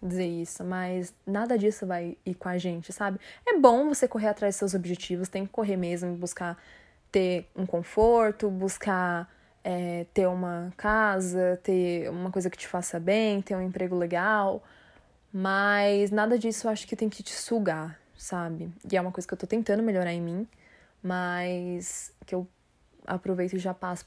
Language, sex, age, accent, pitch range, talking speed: Portuguese, female, 20-39, Brazilian, 180-210 Hz, 180 wpm